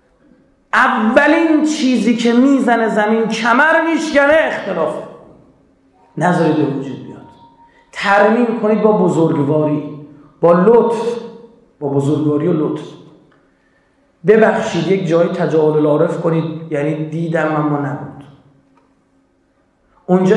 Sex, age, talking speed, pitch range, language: male, 40-59, 95 wpm, 150-225 Hz, Persian